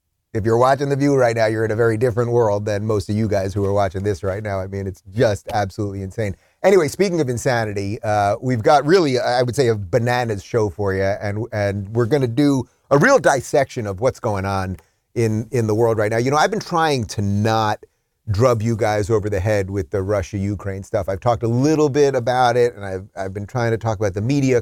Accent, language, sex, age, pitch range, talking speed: American, English, male, 30-49, 100-130 Hz, 240 wpm